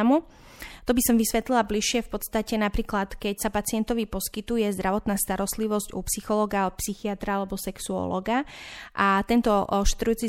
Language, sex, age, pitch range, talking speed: Slovak, female, 30-49, 190-215 Hz, 130 wpm